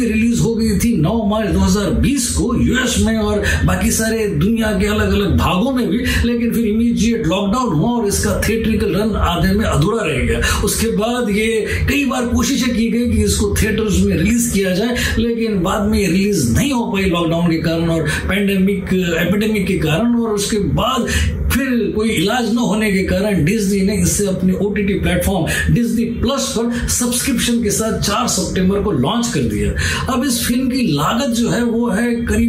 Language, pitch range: Hindi, 200-235 Hz